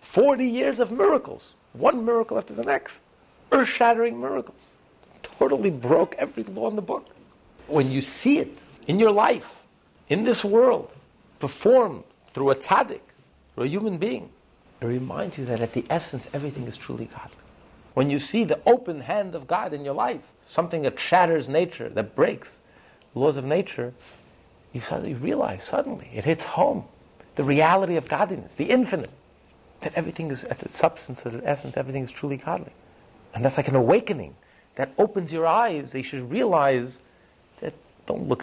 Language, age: English, 50-69